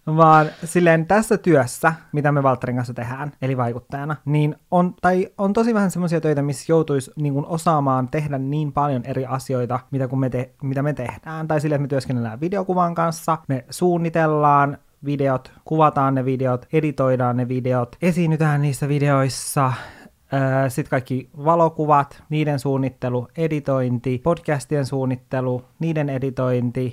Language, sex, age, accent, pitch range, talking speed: Finnish, male, 20-39, native, 130-160 Hz, 145 wpm